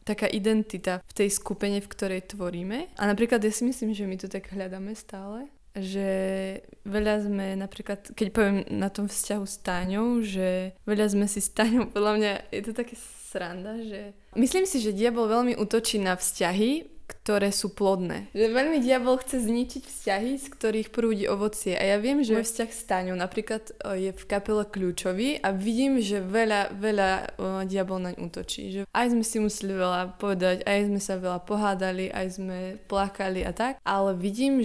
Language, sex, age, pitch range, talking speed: Slovak, female, 20-39, 190-220 Hz, 180 wpm